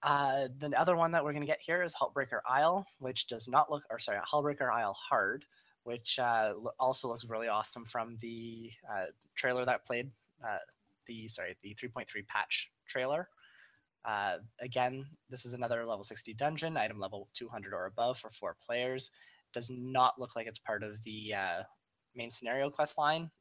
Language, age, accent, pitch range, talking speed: English, 20-39, American, 110-130 Hz, 185 wpm